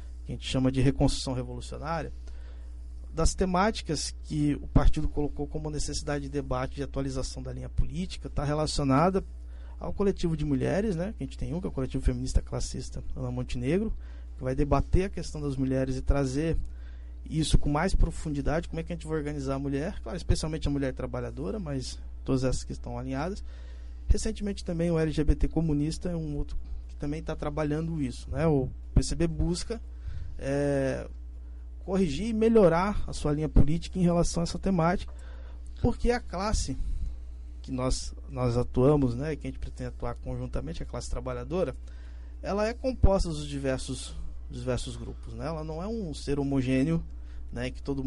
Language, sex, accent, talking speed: Portuguese, male, Brazilian, 170 wpm